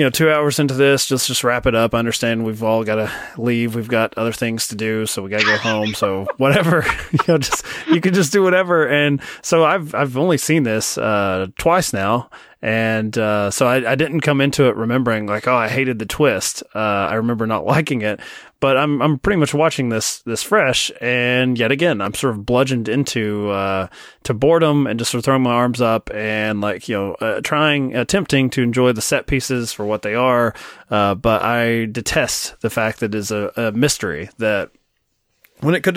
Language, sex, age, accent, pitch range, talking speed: English, male, 20-39, American, 110-140 Hz, 220 wpm